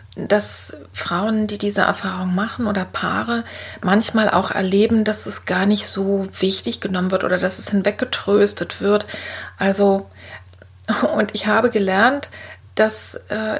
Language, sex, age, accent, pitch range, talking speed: German, female, 40-59, German, 185-215 Hz, 135 wpm